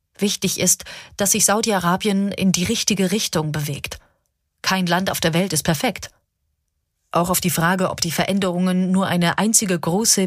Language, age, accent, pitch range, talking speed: German, 30-49, German, 160-195 Hz, 165 wpm